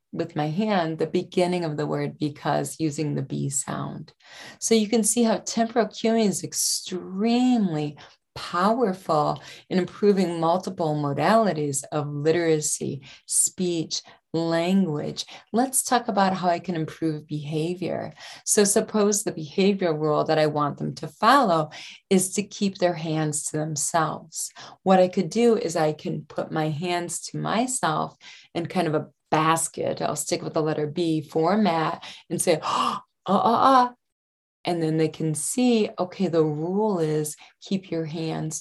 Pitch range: 155-200 Hz